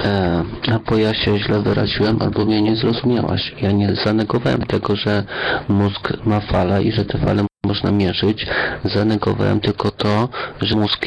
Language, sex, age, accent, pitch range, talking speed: Polish, male, 40-59, native, 100-115 Hz, 155 wpm